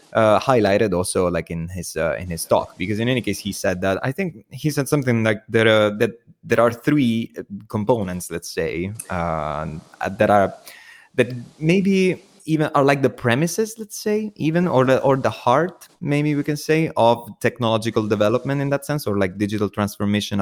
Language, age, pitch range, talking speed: English, 20-39, 95-135 Hz, 190 wpm